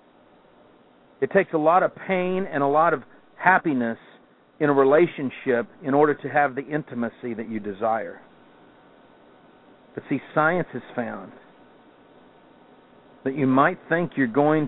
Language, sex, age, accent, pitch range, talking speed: English, male, 50-69, American, 120-170 Hz, 140 wpm